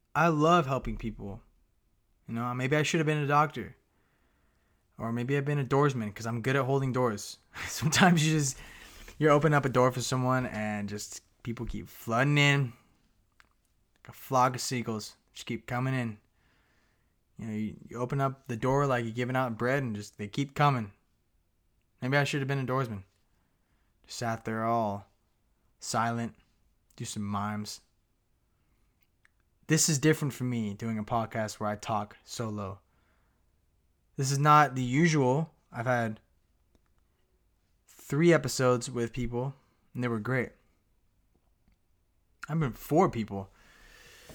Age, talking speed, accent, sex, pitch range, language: 20-39, 155 wpm, American, male, 105-135 Hz, English